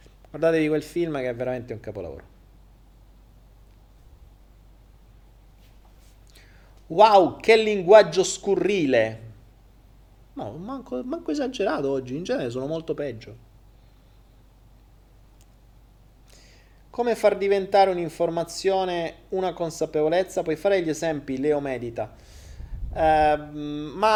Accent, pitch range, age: native, 115-195 Hz, 30-49